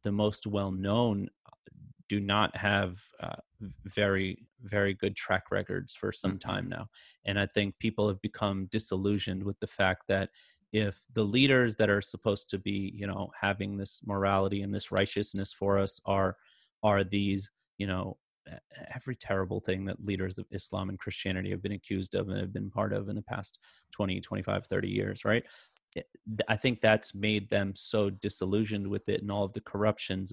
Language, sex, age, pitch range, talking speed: English, male, 30-49, 100-110 Hz, 180 wpm